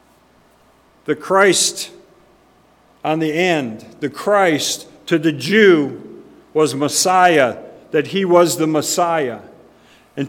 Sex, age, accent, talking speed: male, 50-69, American, 105 wpm